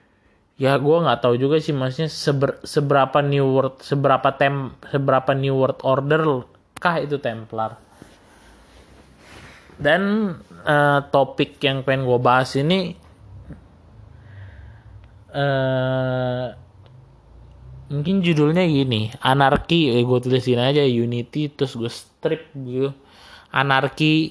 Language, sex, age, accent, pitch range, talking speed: Indonesian, male, 20-39, native, 115-145 Hz, 105 wpm